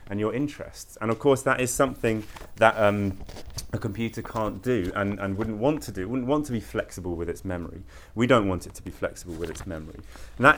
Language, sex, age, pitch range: English, male, 30-49, 95-120 Hz